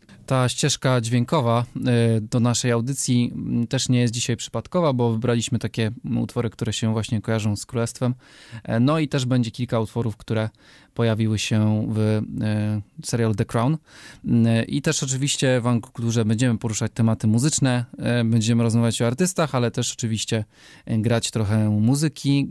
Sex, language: male, Polish